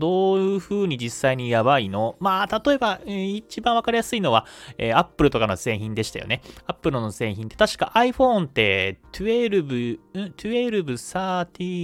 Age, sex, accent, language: 30-49, male, native, Japanese